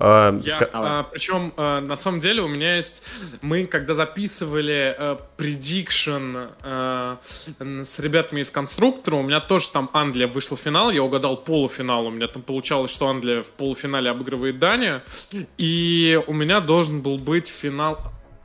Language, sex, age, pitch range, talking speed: Russian, male, 20-39, 135-165 Hz, 145 wpm